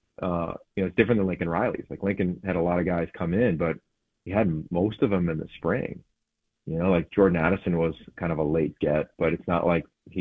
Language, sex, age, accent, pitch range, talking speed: English, male, 40-59, American, 85-100 Hz, 245 wpm